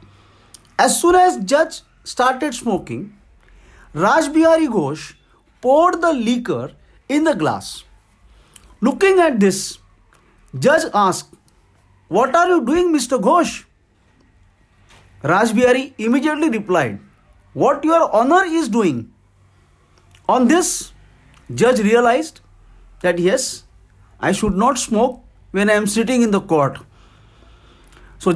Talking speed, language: 110 wpm, English